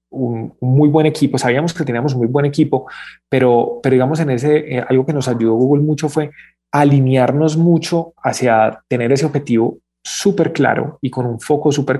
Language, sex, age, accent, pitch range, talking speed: Spanish, male, 20-39, Colombian, 120-150 Hz, 185 wpm